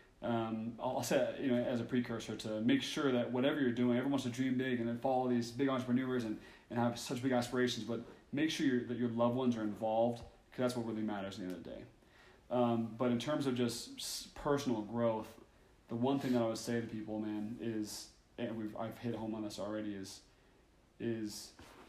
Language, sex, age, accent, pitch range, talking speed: English, male, 30-49, American, 115-130 Hz, 220 wpm